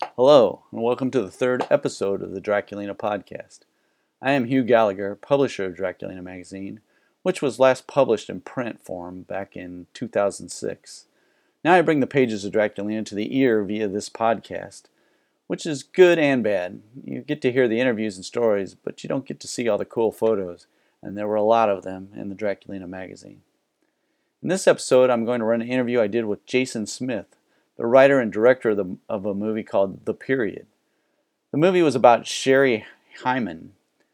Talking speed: 190 wpm